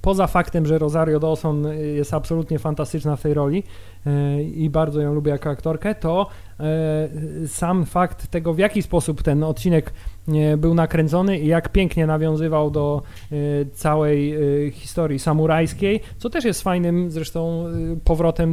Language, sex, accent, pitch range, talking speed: Polish, male, native, 145-170 Hz, 135 wpm